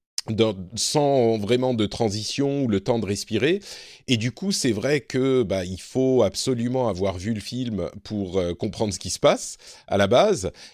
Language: French